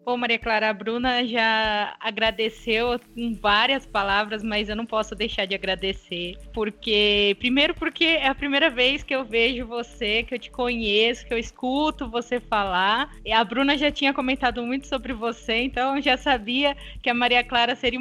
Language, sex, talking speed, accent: Portuguese, female, 185 wpm, Brazilian